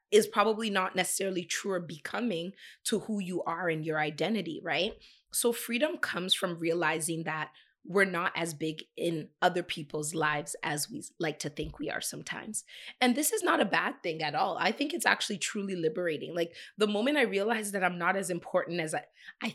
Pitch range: 175-230 Hz